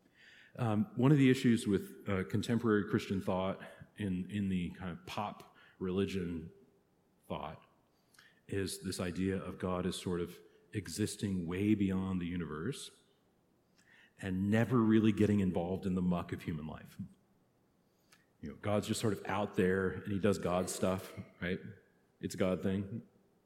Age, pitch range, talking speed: 40-59, 90-110 Hz, 155 wpm